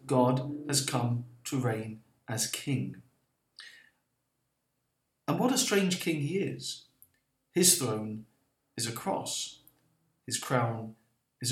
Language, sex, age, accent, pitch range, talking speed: English, male, 50-69, British, 125-150 Hz, 115 wpm